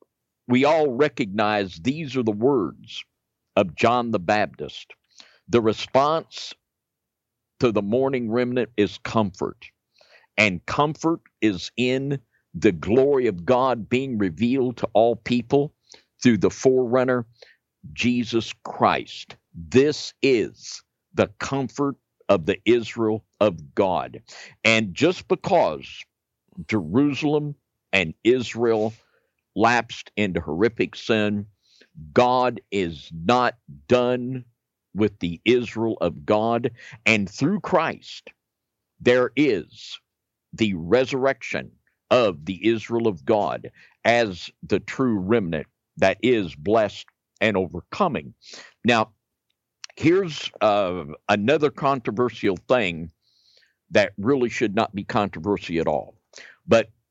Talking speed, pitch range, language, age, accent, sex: 105 wpm, 105-125 Hz, English, 50-69, American, male